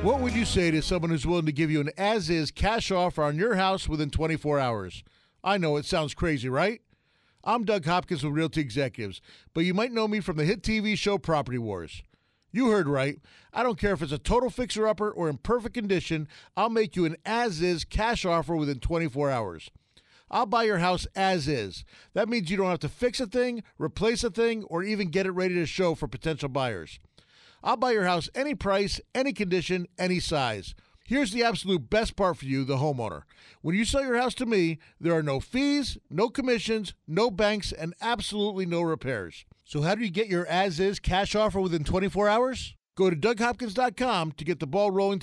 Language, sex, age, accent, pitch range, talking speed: English, male, 40-59, American, 160-220 Hz, 205 wpm